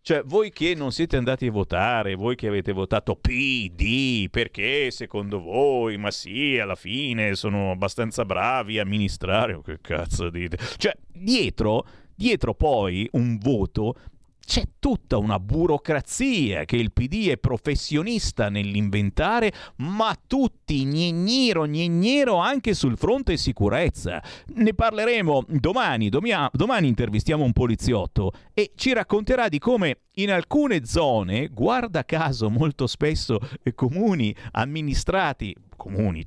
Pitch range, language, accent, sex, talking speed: 115-190 Hz, Italian, native, male, 125 wpm